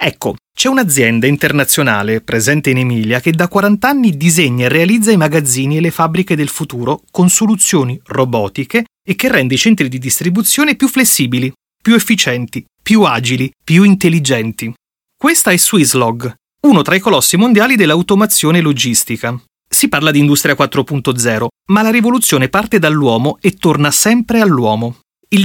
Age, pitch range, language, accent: 30-49, 130-205 Hz, Italian, native